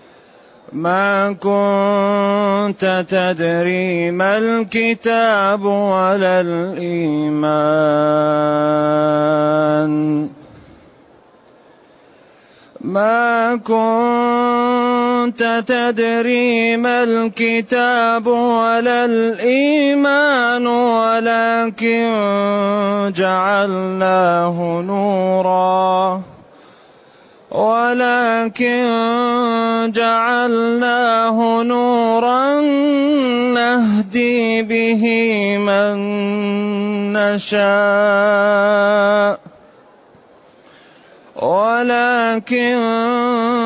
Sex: male